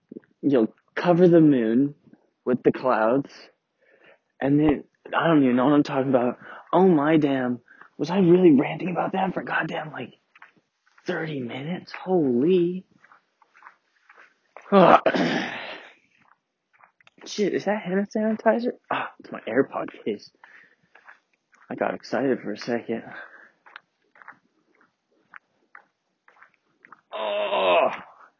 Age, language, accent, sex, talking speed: 20-39, English, American, male, 105 wpm